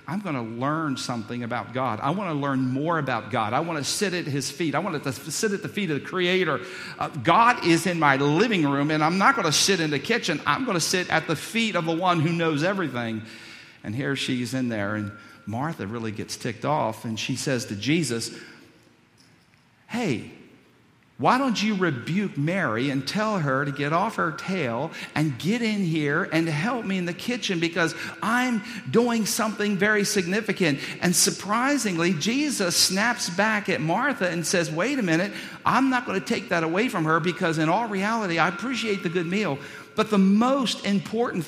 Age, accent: 50-69, American